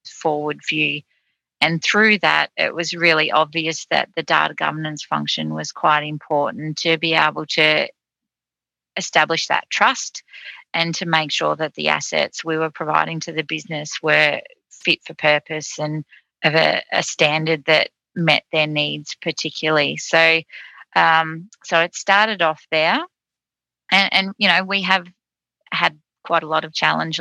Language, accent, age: English, Australian, 30-49